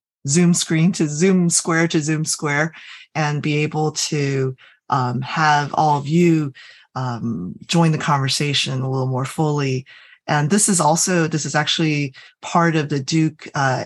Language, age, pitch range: English, 30-49, 140-165 Hz